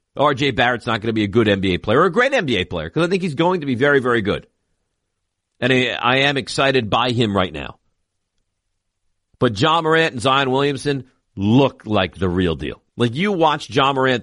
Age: 50-69